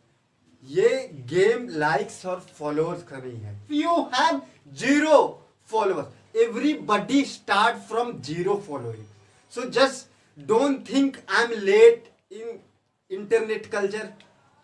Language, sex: Hindi, male